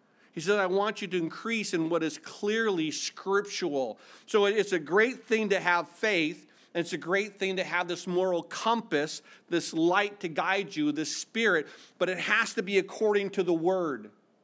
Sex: male